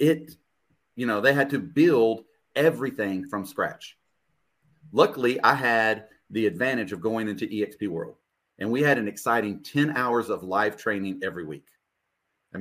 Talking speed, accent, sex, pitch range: 155 wpm, American, male, 110-135 Hz